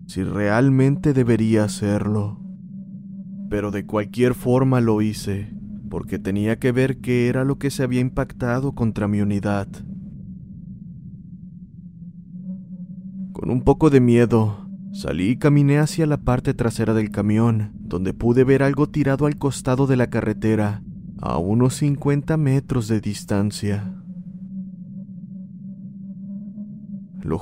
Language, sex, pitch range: Spanish, male, 110-175 Hz